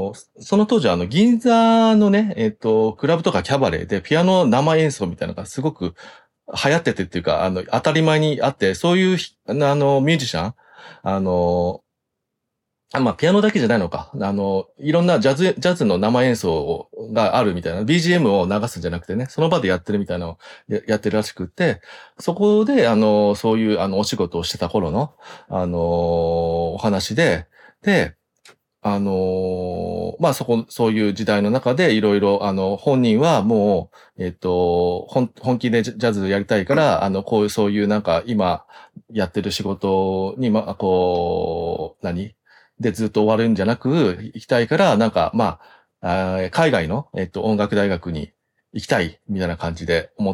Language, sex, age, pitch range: Japanese, male, 40-59, 90-145 Hz